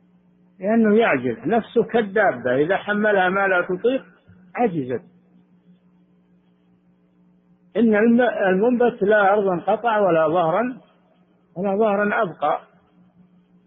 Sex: male